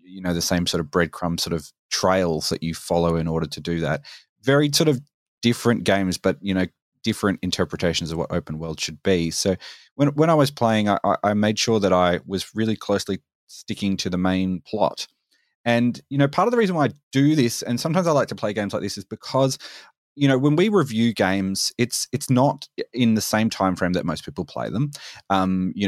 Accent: Australian